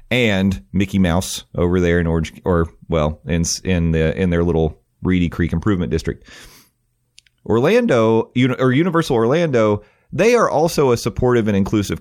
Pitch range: 85-120 Hz